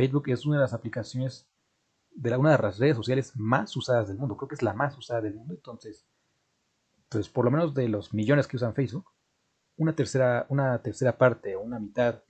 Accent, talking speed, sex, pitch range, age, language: Mexican, 215 wpm, male, 110-135 Hz, 30-49, Spanish